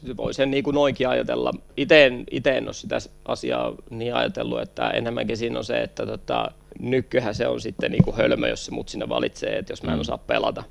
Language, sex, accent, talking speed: Finnish, male, native, 200 wpm